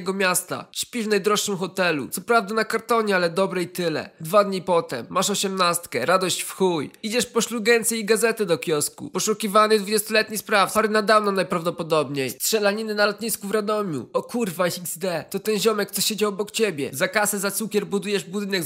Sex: male